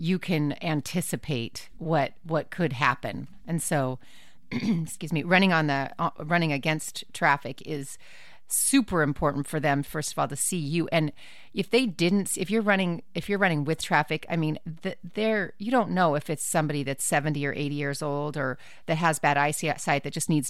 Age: 30-49